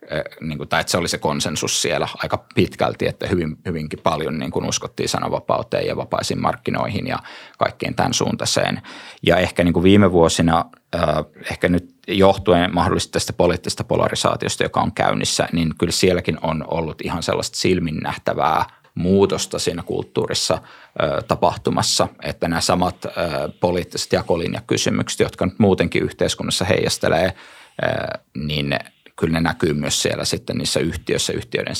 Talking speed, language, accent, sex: 140 wpm, Finnish, native, male